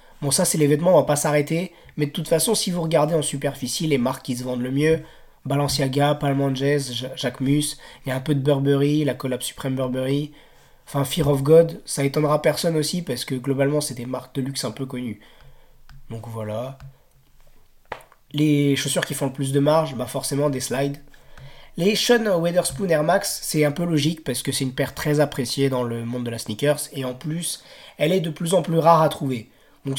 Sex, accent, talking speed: male, French, 215 wpm